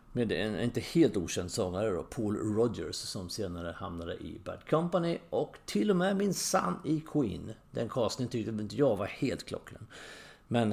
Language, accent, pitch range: English, Swedish, 95-130 Hz